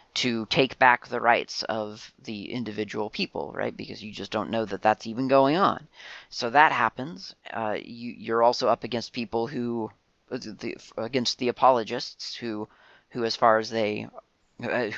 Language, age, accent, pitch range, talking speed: English, 30-49, American, 110-135 Hz, 170 wpm